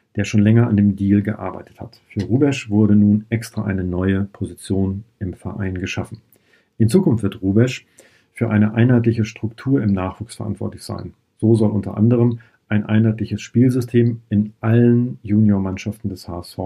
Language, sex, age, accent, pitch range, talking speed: German, male, 40-59, German, 100-115 Hz, 155 wpm